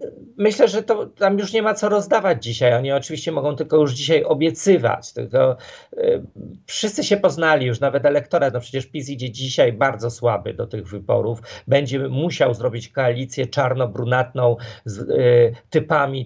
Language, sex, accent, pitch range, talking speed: Polish, male, native, 125-160 Hz, 150 wpm